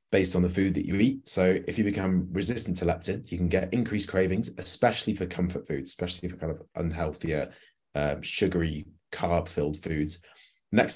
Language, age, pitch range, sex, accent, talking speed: English, 20-39, 85-100 Hz, male, British, 185 wpm